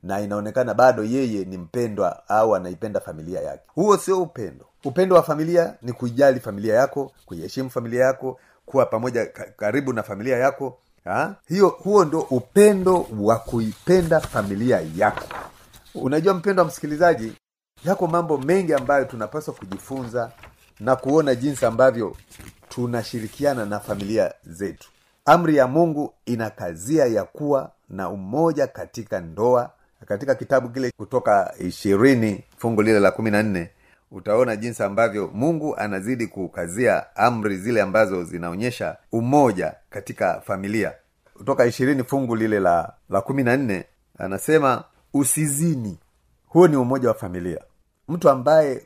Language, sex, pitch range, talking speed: Swahili, male, 105-150 Hz, 130 wpm